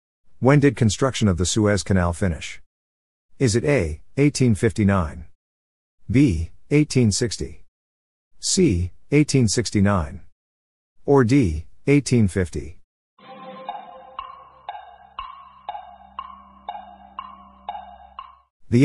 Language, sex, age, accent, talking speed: English, male, 50-69, American, 65 wpm